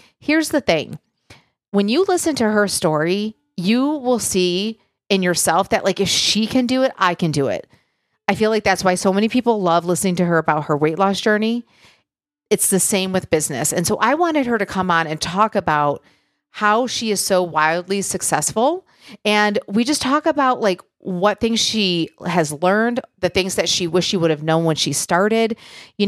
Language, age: English, 40-59